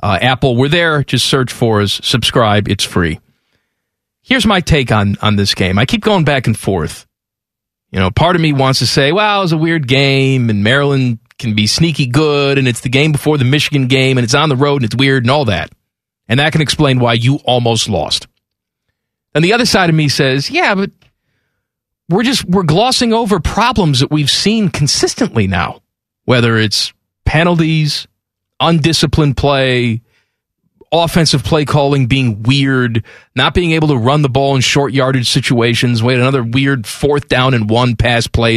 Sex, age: male, 40-59